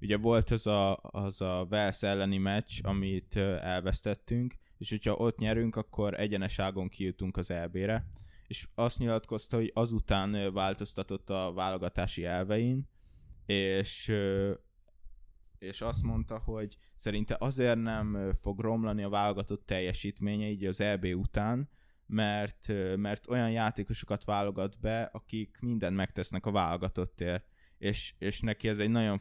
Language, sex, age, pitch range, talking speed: Hungarian, male, 20-39, 95-105 Hz, 130 wpm